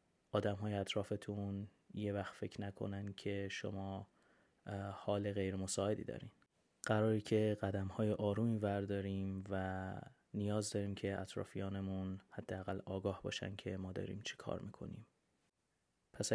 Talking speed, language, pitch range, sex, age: 115 wpm, Persian, 100-105 Hz, male, 20-39